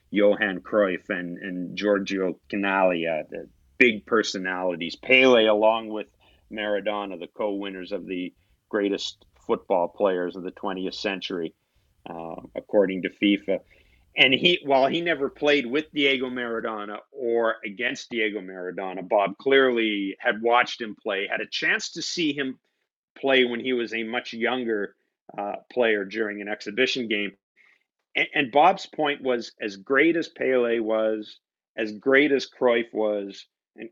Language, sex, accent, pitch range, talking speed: English, male, American, 100-125 Hz, 145 wpm